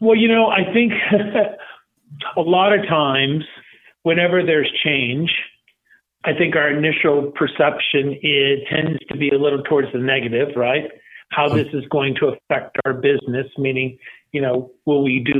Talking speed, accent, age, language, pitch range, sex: 160 wpm, American, 50-69, English, 135-160 Hz, male